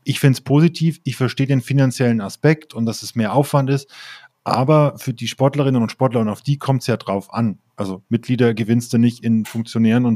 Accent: German